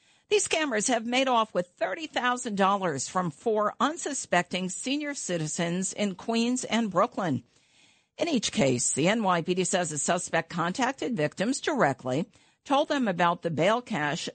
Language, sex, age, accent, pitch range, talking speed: English, female, 50-69, American, 155-225 Hz, 140 wpm